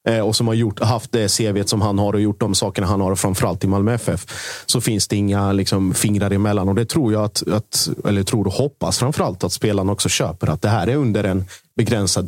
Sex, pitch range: male, 95-115 Hz